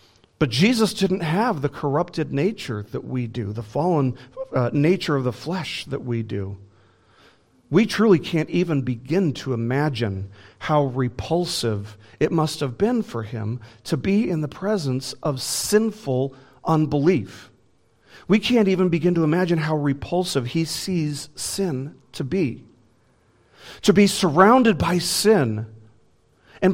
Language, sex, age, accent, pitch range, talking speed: English, male, 40-59, American, 110-160 Hz, 140 wpm